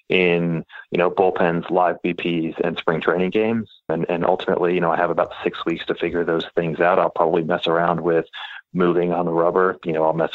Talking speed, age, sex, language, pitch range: 220 wpm, 30-49, male, English, 85-95 Hz